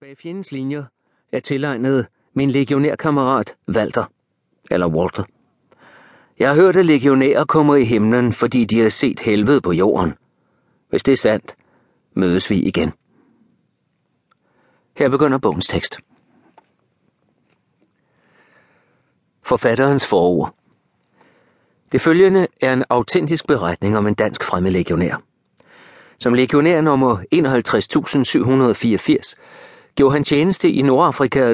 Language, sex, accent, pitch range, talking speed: Danish, male, native, 115-150 Hz, 110 wpm